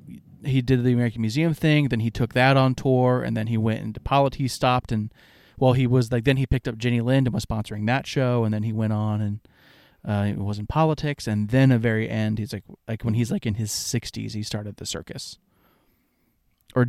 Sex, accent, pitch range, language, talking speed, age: male, American, 110-135 Hz, English, 235 wpm, 30-49